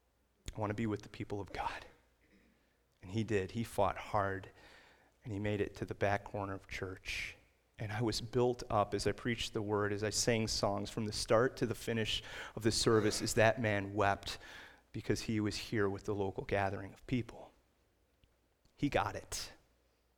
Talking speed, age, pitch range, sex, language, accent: 195 wpm, 30-49, 100-130 Hz, male, English, American